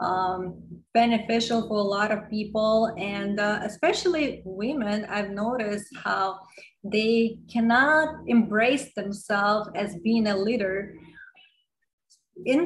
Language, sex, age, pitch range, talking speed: English, female, 20-39, 195-230 Hz, 110 wpm